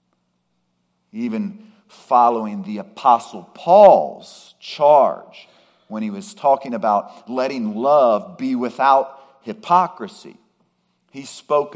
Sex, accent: male, American